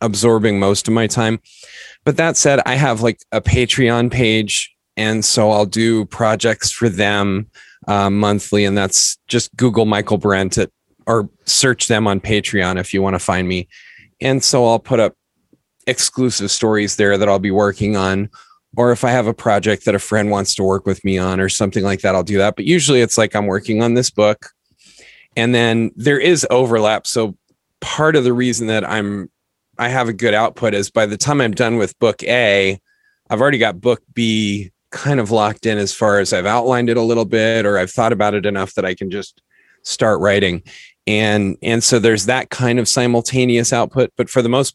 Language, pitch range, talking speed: English, 100-120 Hz, 205 wpm